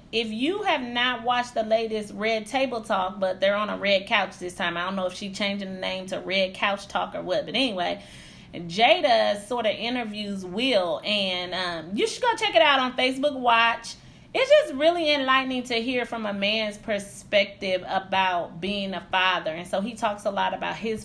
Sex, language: female, English